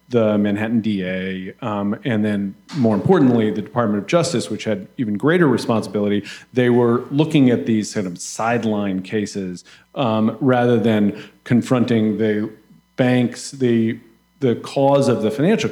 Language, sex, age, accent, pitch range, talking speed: English, male, 40-59, American, 100-120 Hz, 145 wpm